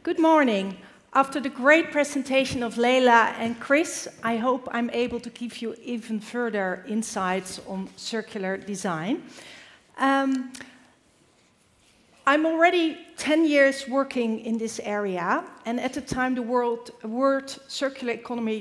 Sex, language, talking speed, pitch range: female, English, 125 wpm, 215-265 Hz